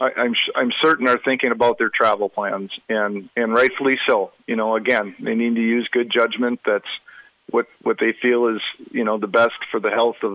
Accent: American